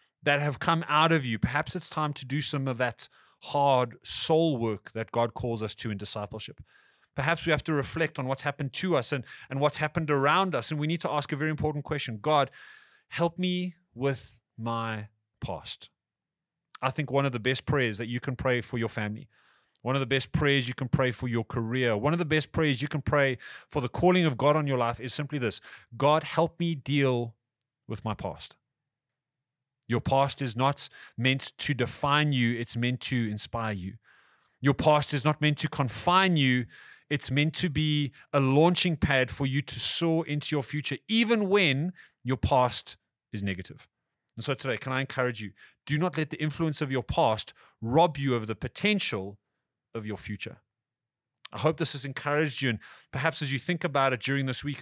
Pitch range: 120-150 Hz